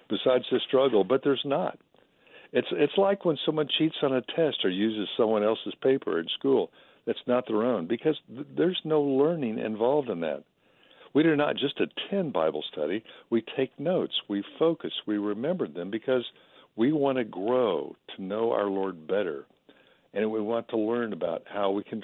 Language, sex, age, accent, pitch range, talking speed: English, male, 60-79, American, 100-140 Hz, 185 wpm